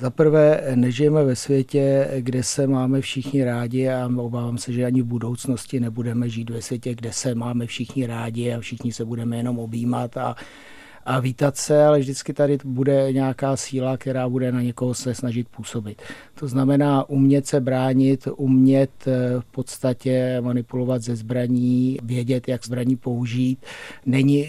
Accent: native